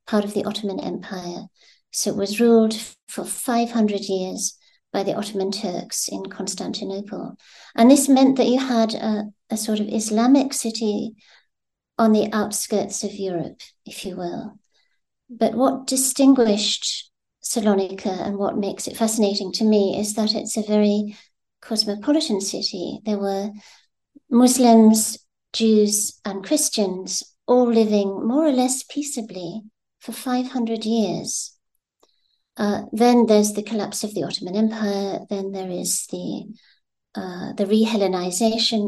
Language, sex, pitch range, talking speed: English, female, 200-230 Hz, 135 wpm